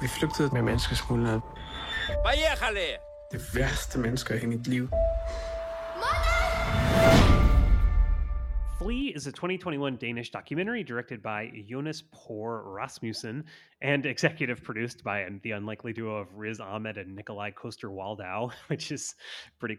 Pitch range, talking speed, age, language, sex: 105-135 Hz, 80 wpm, 30-49, English, male